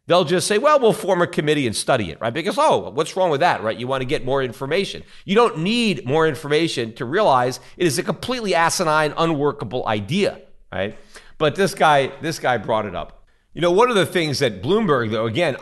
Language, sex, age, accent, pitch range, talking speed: English, male, 40-59, American, 115-160 Hz, 225 wpm